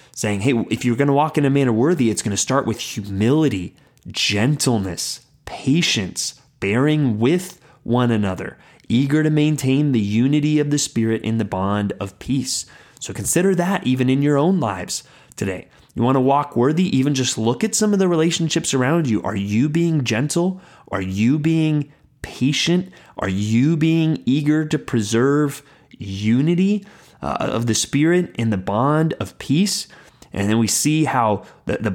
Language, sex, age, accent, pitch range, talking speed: English, male, 30-49, American, 110-150 Hz, 170 wpm